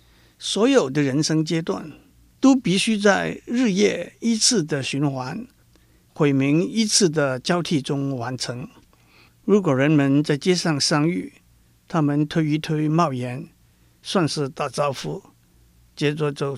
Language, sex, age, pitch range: Chinese, male, 60-79, 135-165 Hz